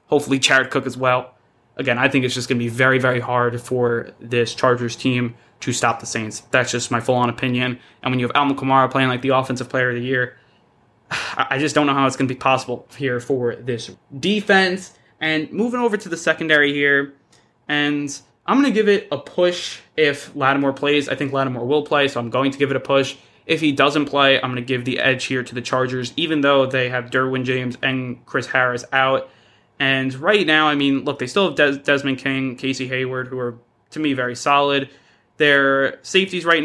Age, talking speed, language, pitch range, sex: 20-39, 220 wpm, English, 125-145 Hz, male